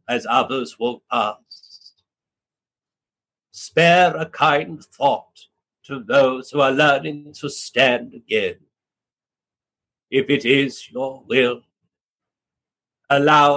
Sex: male